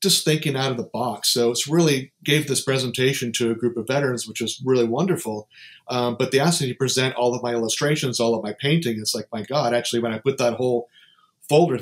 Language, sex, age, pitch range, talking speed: English, male, 40-59, 115-140 Hz, 240 wpm